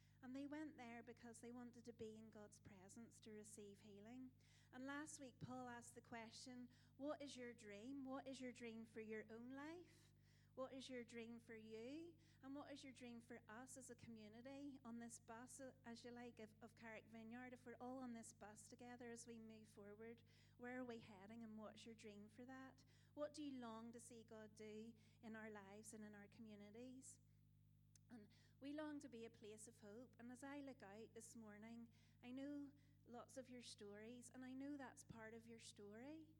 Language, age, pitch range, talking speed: English, 30-49, 220-250 Hz, 205 wpm